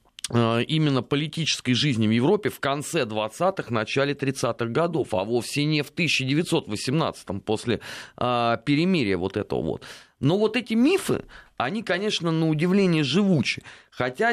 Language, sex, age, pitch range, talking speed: Russian, male, 30-49, 110-155 Hz, 135 wpm